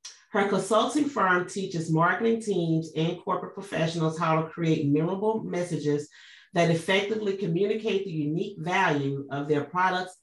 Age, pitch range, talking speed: 40-59, 155-195 Hz, 135 wpm